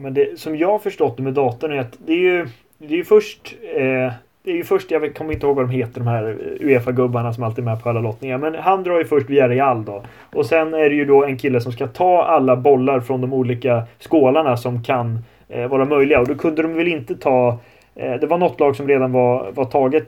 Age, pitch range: 30-49, 125-155 Hz